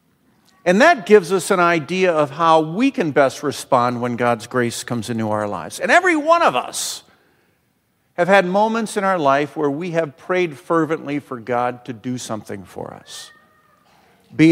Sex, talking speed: male, 180 wpm